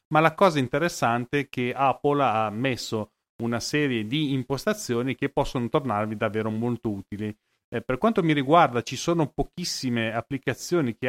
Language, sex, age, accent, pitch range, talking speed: Italian, male, 30-49, native, 115-150 Hz, 155 wpm